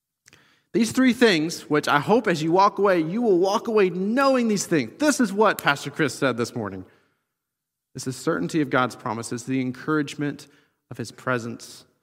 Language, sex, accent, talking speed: English, male, American, 180 wpm